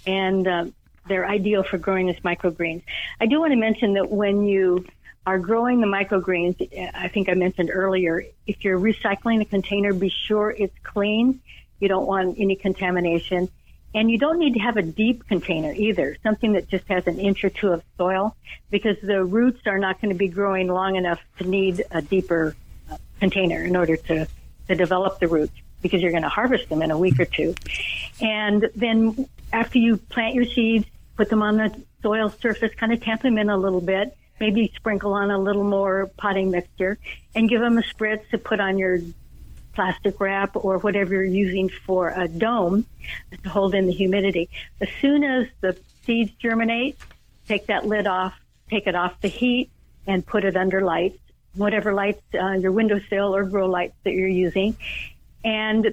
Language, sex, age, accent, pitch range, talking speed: English, female, 60-79, American, 185-220 Hz, 190 wpm